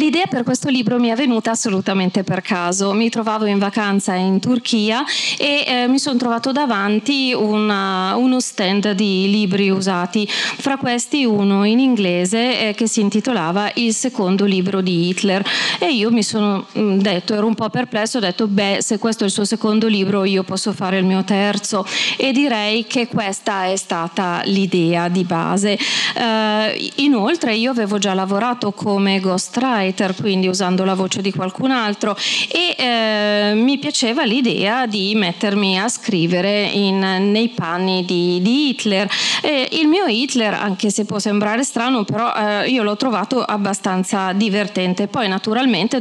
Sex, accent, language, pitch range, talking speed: female, native, Italian, 195-235 Hz, 160 wpm